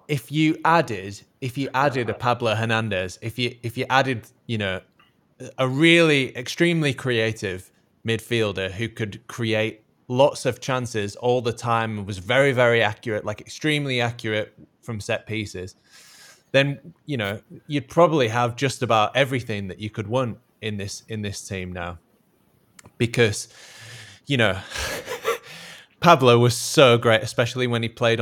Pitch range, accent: 105-130 Hz, British